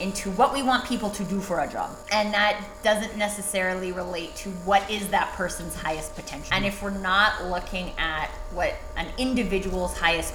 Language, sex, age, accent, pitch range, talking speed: English, female, 20-39, American, 180-210 Hz, 185 wpm